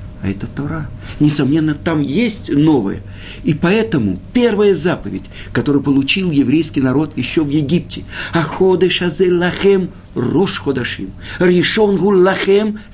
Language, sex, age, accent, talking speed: Russian, male, 50-69, native, 110 wpm